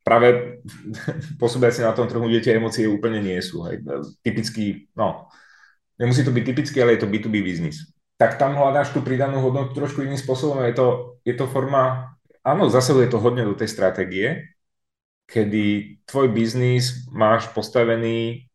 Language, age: Czech, 30-49